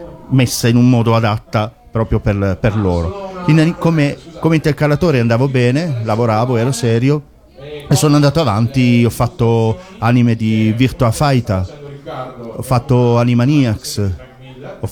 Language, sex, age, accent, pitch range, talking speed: Italian, male, 40-59, native, 115-140 Hz, 130 wpm